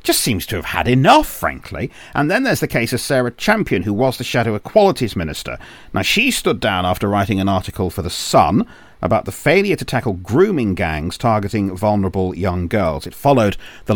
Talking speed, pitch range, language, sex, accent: 200 wpm, 95-135 Hz, English, male, British